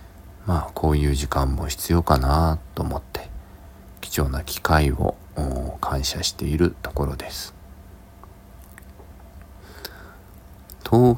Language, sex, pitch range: Japanese, male, 70-90 Hz